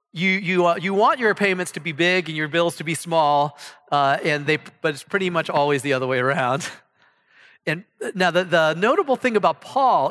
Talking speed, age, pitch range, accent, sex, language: 215 wpm, 40-59, 165-230 Hz, American, male, English